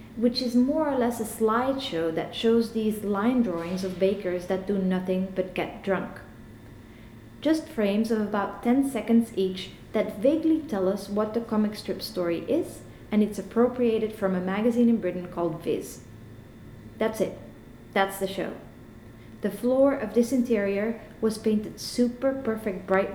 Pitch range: 185-235 Hz